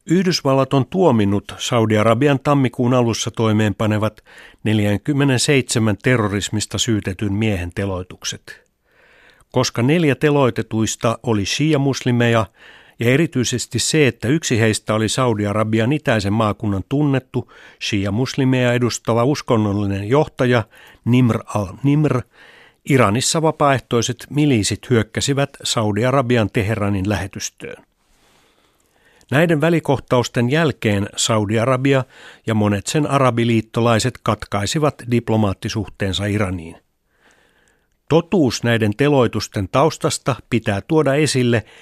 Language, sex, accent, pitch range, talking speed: Finnish, male, native, 105-135 Hz, 85 wpm